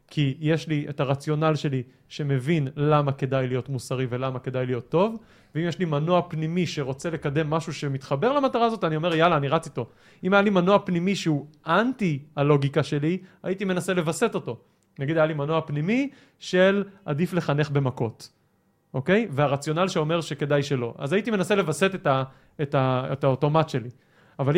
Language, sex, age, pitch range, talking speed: Hebrew, male, 30-49, 135-175 Hz, 170 wpm